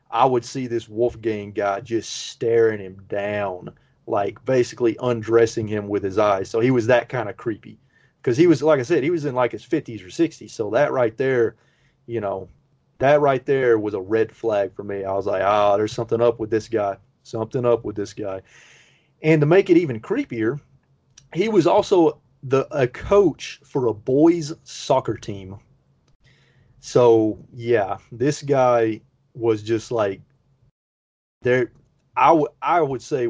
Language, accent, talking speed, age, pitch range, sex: English, American, 180 wpm, 30-49, 105-135 Hz, male